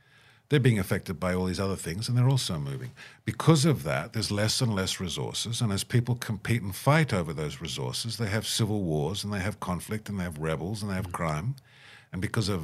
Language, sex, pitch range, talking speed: English, male, 90-120 Hz, 230 wpm